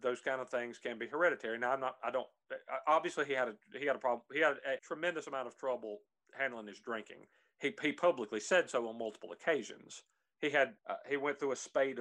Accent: American